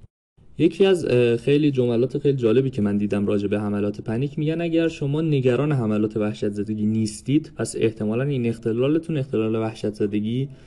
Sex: male